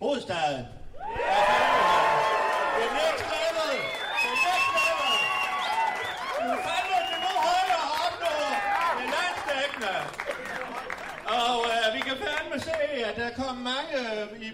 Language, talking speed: Danish, 110 wpm